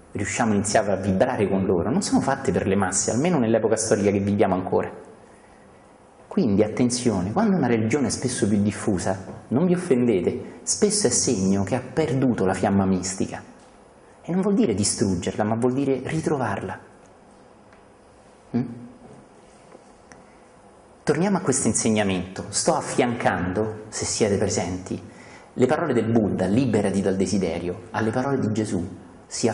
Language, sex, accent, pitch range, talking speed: Italian, male, native, 100-135 Hz, 145 wpm